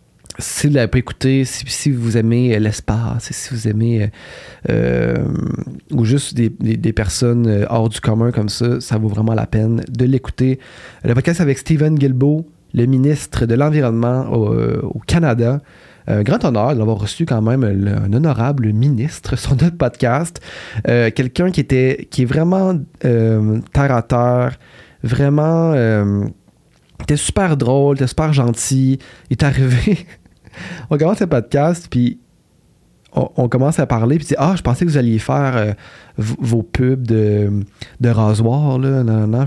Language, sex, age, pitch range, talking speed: French, male, 30-49, 115-140 Hz, 160 wpm